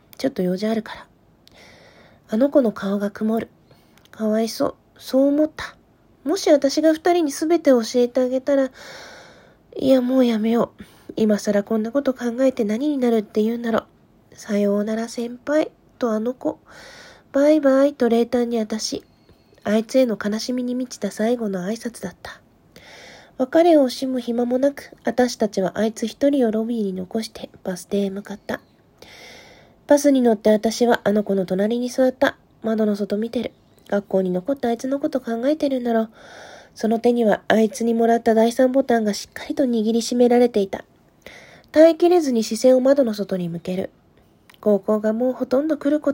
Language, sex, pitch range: Japanese, female, 220-270 Hz